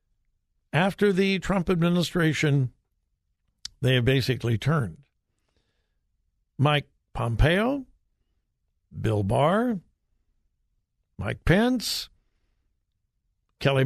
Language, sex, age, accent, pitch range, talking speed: English, male, 60-79, American, 120-175 Hz, 65 wpm